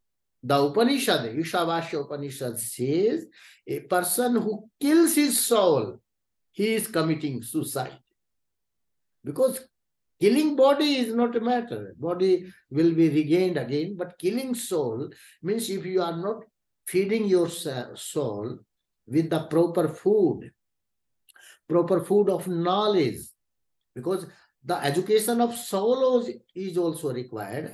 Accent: Indian